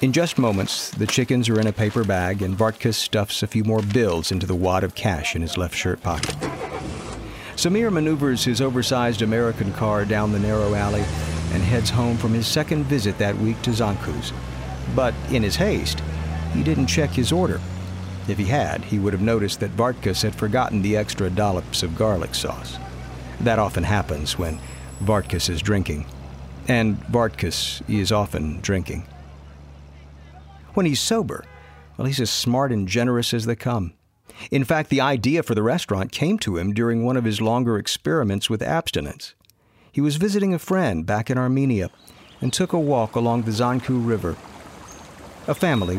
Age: 50-69